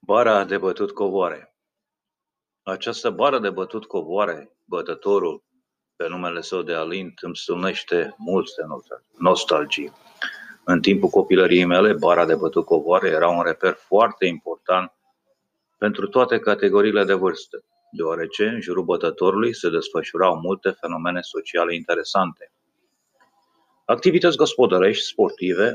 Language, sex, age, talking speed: Romanian, male, 30-49, 110 wpm